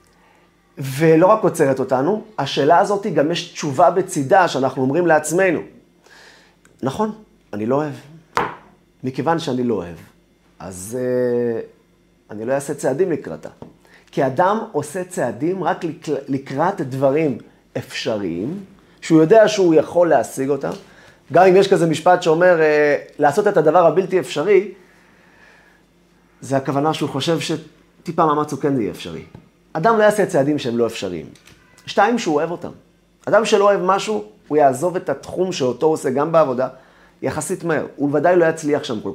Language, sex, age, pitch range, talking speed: Hebrew, male, 30-49, 135-180 Hz, 150 wpm